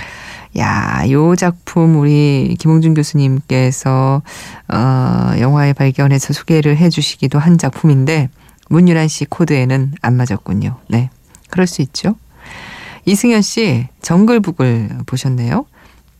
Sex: female